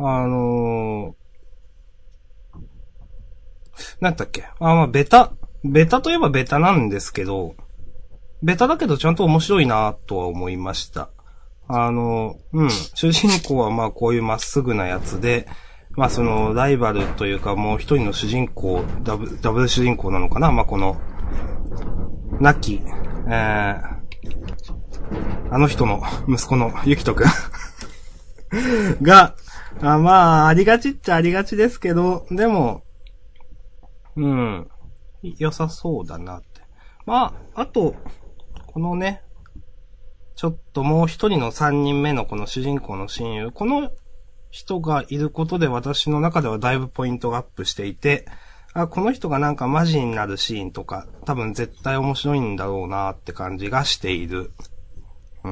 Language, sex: Japanese, male